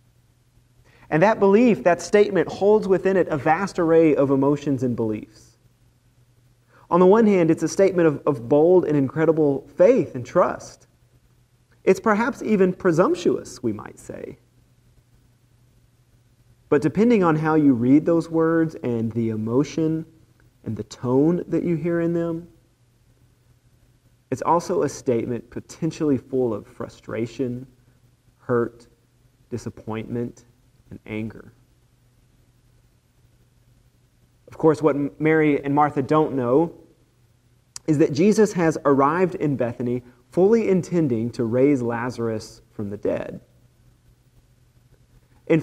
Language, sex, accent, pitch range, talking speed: English, male, American, 120-165 Hz, 120 wpm